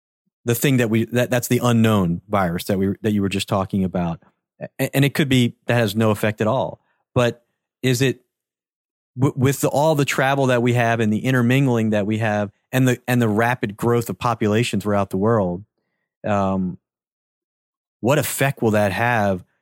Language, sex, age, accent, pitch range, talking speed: English, male, 40-59, American, 105-130 Hz, 195 wpm